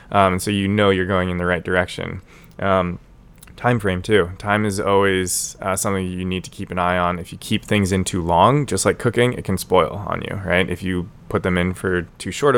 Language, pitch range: English, 90-105 Hz